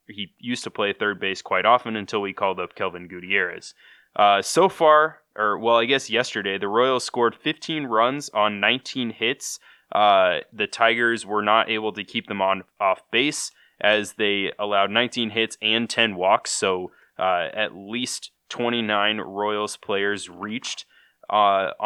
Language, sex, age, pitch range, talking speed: English, male, 20-39, 100-120 Hz, 160 wpm